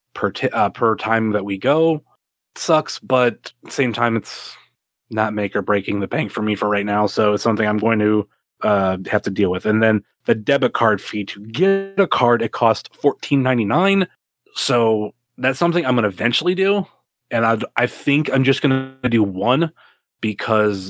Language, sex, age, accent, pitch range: Chinese, male, 20-39, American, 105-140 Hz